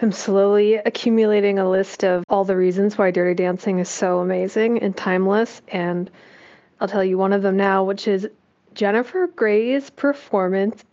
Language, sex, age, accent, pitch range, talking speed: English, female, 20-39, American, 190-245 Hz, 165 wpm